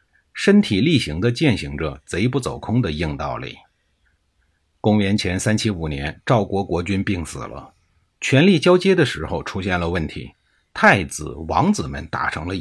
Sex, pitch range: male, 80-135 Hz